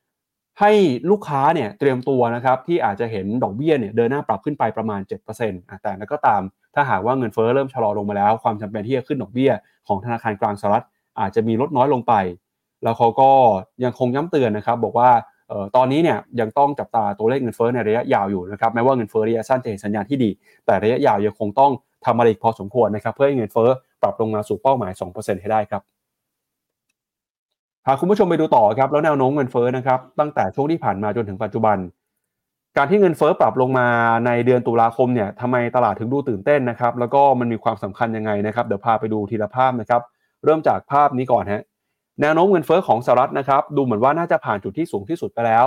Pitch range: 110-135 Hz